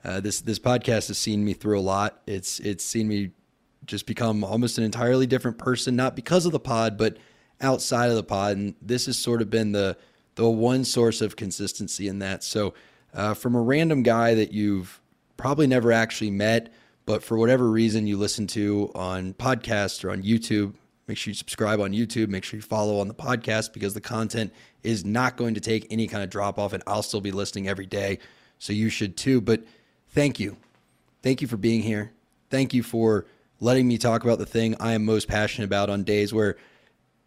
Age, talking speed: 20-39, 210 wpm